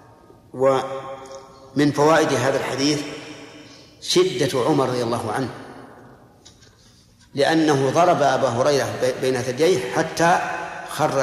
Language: Arabic